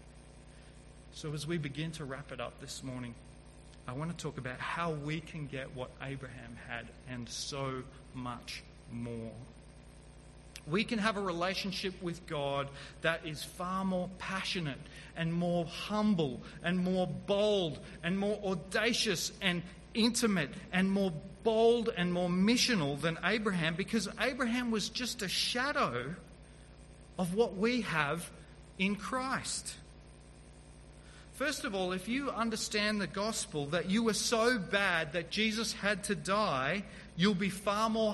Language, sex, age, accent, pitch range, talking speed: English, male, 30-49, Australian, 135-205 Hz, 145 wpm